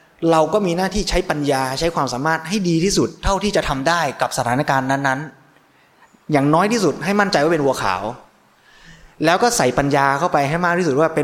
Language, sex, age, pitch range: Thai, male, 20-39, 135-170 Hz